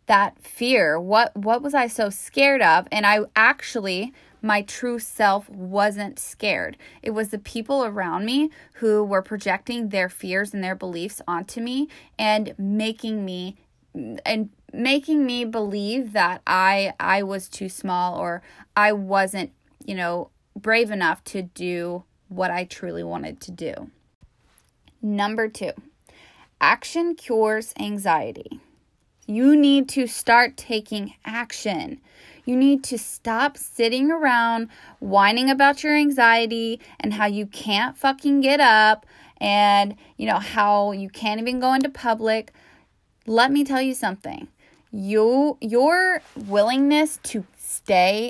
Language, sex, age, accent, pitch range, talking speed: English, female, 20-39, American, 200-260 Hz, 135 wpm